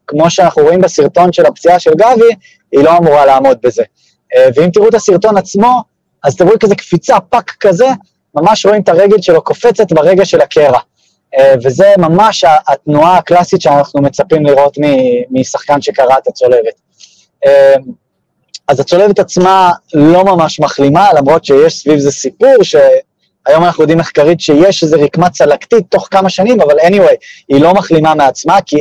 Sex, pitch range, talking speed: male, 145-210 Hz, 150 wpm